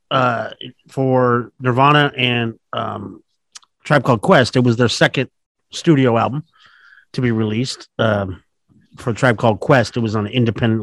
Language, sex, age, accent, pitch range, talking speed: English, male, 40-59, American, 110-140 Hz, 150 wpm